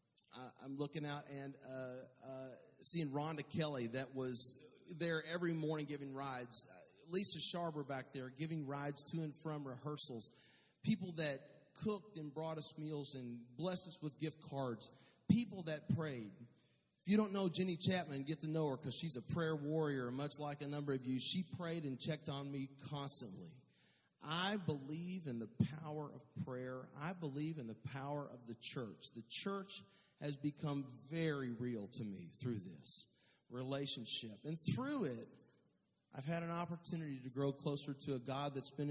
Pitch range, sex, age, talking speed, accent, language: 130-155 Hz, male, 40-59, 175 wpm, American, English